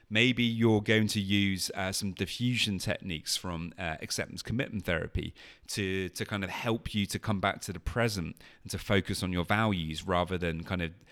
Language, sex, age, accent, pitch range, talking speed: English, male, 30-49, British, 90-115 Hz, 195 wpm